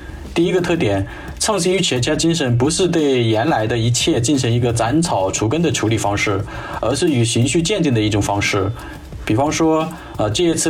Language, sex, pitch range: Chinese, male, 110-155 Hz